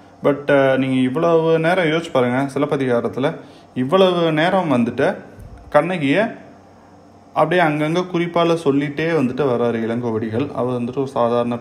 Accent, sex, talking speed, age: native, male, 115 wpm, 20-39